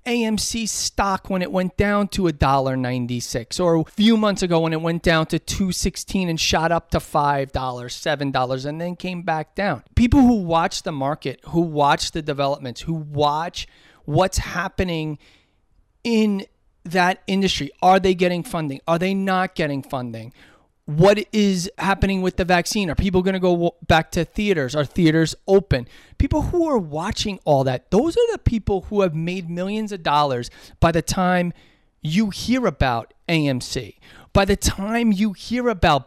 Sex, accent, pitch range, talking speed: male, American, 150-205 Hz, 170 wpm